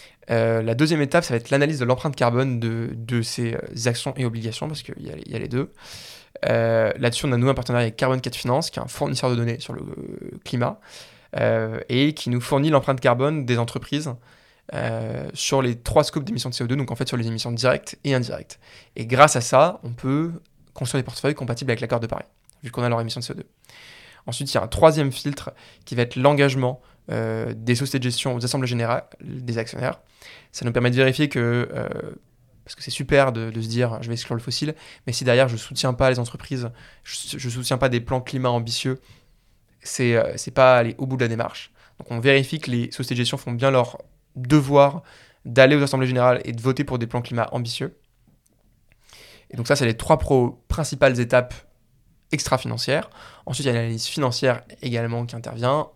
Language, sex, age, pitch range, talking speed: French, male, 20-39, 120-140 Hz, 215 wpm